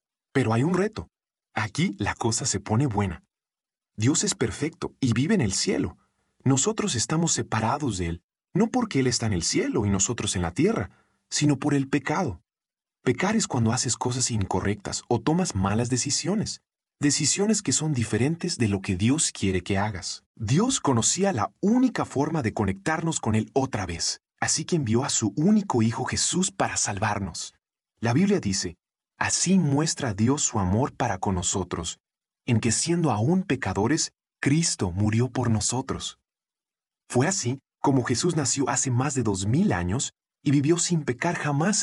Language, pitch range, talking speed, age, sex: Spanish, 110-160 Hz, 170 wpm, 40-59, male